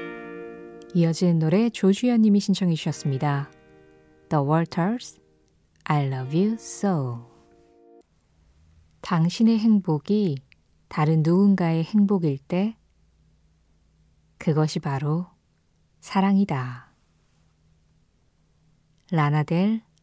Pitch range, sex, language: 145-200 Hz, female, Korean